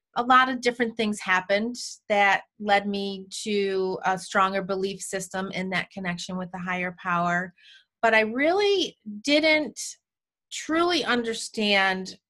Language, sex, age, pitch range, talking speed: English, female, 30-49, 190-230 Hz, 130 wpm